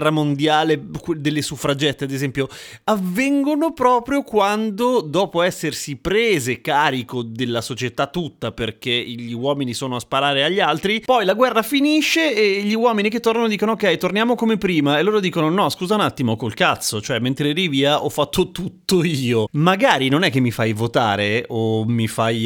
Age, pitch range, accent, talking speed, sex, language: 30-49, 130-210 Hz, native, 170 wpm, male, Italian